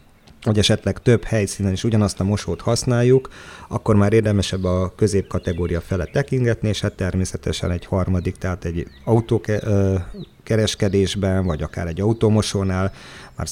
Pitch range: 90-110 Hz